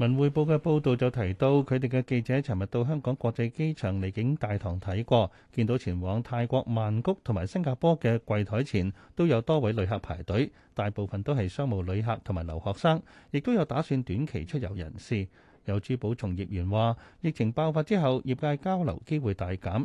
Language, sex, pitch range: Chinese, male, 100-140 Hz